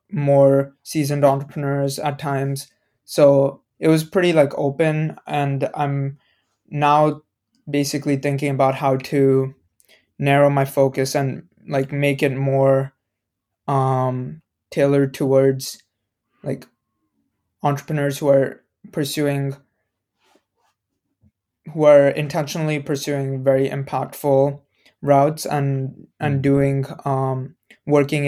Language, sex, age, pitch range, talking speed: English, male, 20-39, 130-145 Hz, 100 wpm